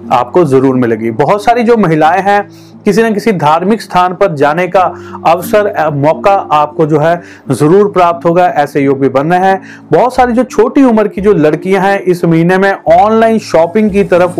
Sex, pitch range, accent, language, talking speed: male, 150-190 Hz, native, Hindi, 190 wpm